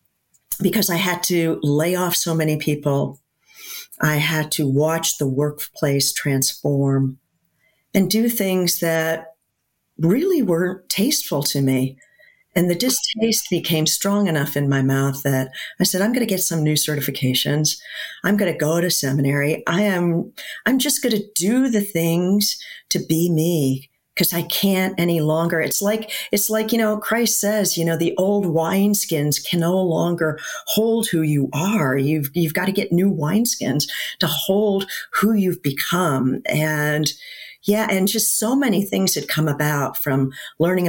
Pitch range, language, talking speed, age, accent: 145-190 Hz, English, 160 wpm, 40-59, American